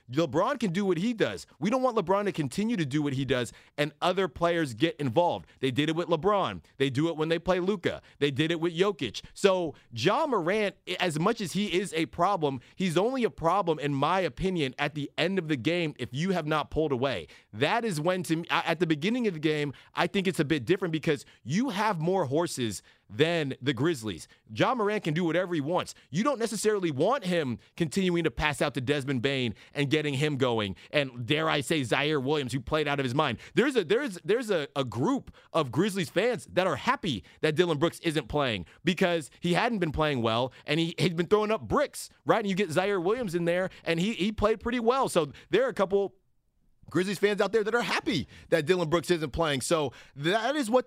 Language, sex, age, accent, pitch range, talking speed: English, male, 30-49, American, 145-185 Hz, 230 wpm